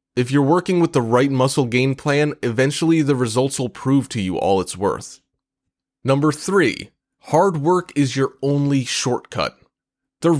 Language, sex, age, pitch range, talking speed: English, male, 30-49, 125-150 Hz, 160 wpm